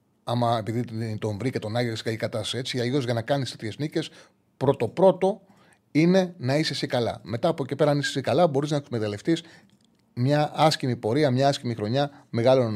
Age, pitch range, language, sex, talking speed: 30-49, 110-145 Hz, Greek, male, 195 wpm